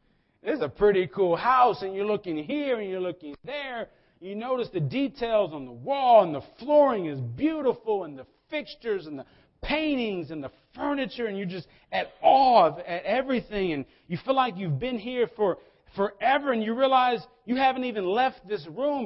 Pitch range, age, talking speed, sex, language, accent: 150-235 Hz, 40-59, 190 wpm, male, English, American